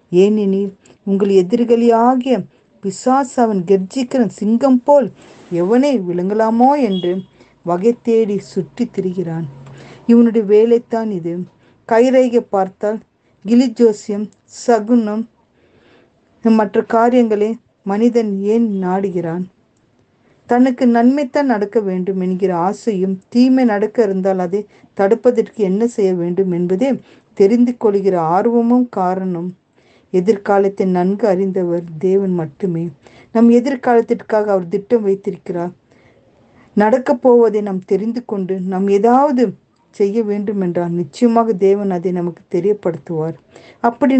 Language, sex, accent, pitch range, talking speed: Tamil, female, native, 185-230 Hz, 100 wpm